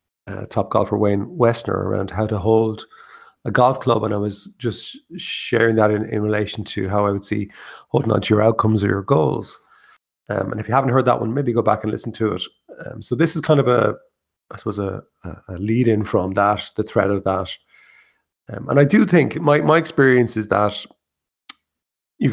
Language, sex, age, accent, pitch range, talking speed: English, male, 30-49, Irish, 105-125 Hz, 220 wpm